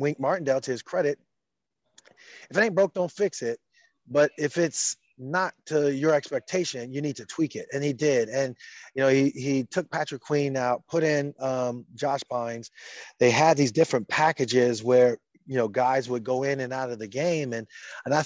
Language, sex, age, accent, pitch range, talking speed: English, male, 30-49, American, 120-145 Hz, 200 wpm